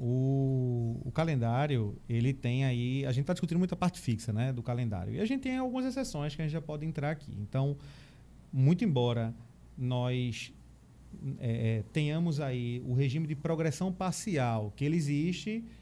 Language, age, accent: Portuguese, 30-49, Brazilian